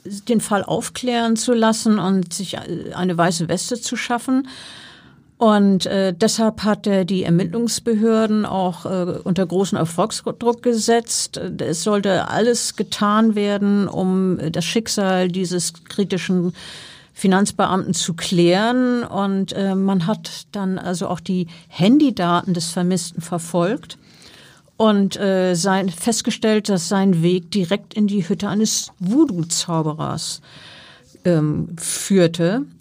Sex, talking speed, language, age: female, 120 wpm, German, 50-69